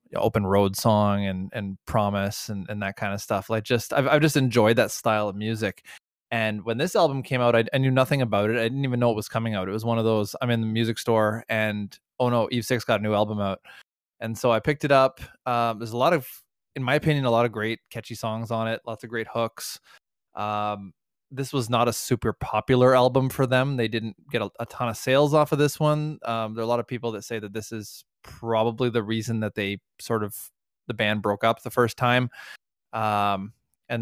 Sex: male